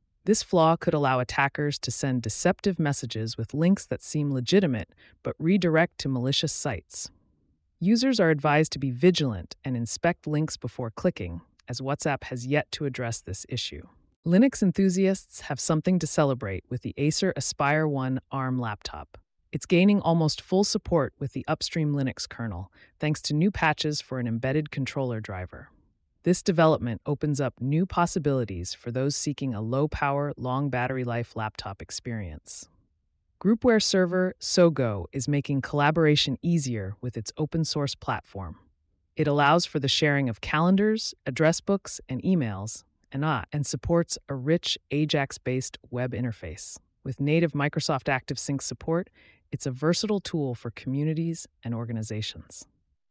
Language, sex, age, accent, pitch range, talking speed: English, female, 30-49, American, 120-160 Hz, 140 wpm